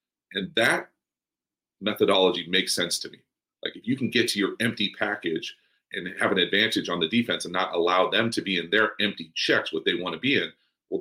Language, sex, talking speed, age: English, male, 220 wpm, 40-59